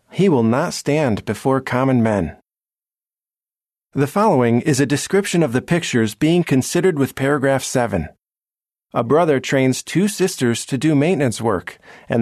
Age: 40-59